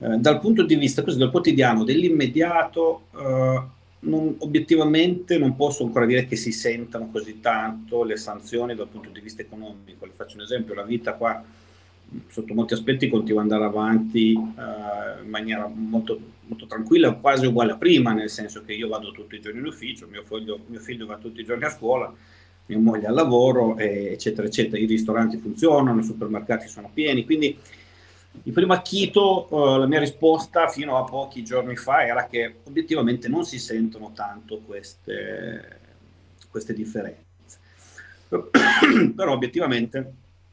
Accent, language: native, Italian